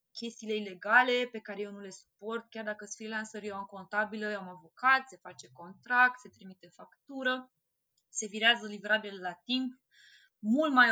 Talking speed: 170 wpm